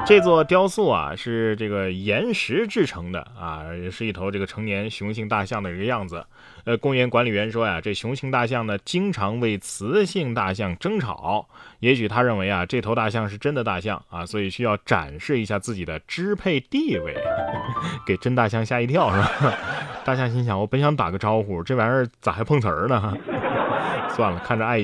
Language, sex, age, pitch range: Chinese, male, 20-39, 105-145 Hz